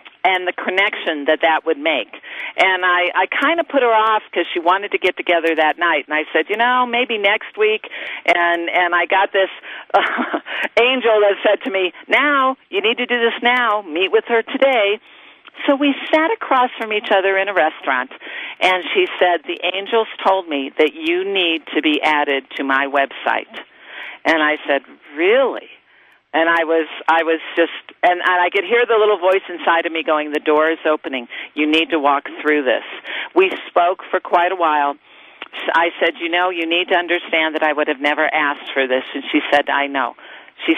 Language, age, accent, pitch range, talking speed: English, 50-69, American, 155-220 Hz, 205 wpm